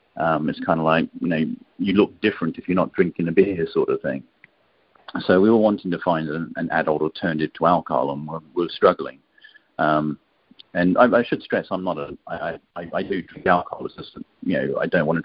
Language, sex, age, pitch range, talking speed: English, male, 40-59, 80-95 Hz, 225 wpm